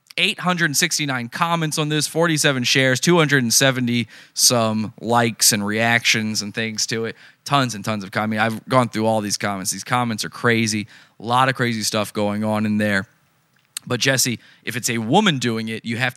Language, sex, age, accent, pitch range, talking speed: English, male, 20-39, American, 115-150 Hz, 180 wpm